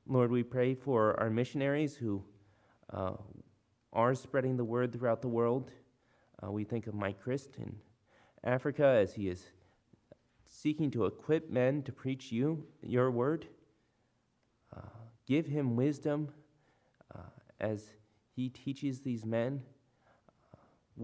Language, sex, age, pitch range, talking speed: English, male, 30-49, 110-125 Hz, 130 wpm